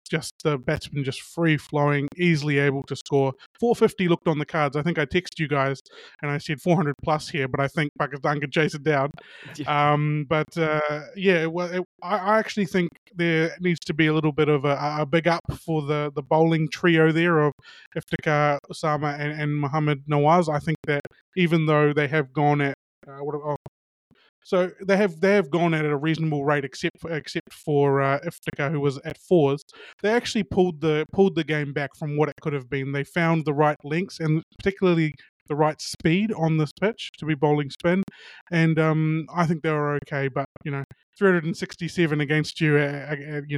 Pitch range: 145-170 Hz